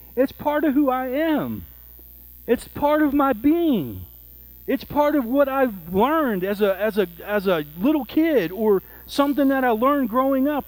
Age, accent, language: 40-59, American, English